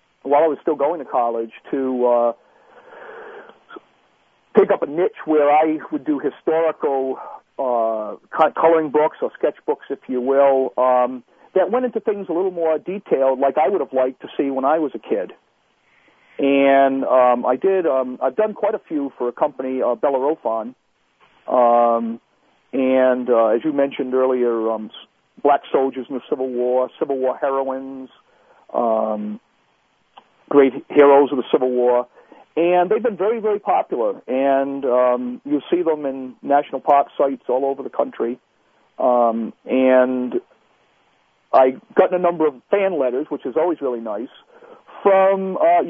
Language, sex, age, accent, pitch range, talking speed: English, male, 50-69, American, 125-185 Hz, 160 wpm